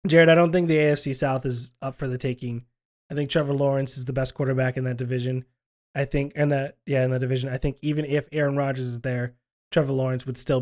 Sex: male